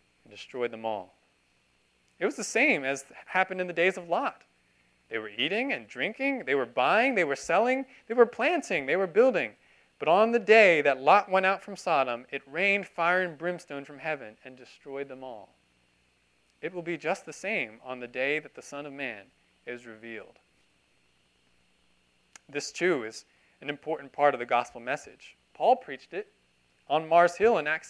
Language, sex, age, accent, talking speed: English, male, 30-49, American, 185 wpm